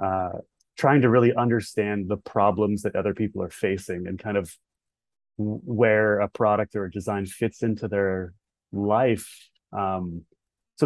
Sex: male